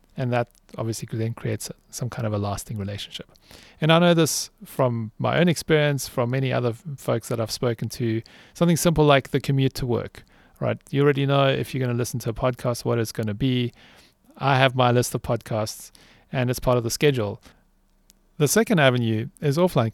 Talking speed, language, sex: 200 wpm, English, male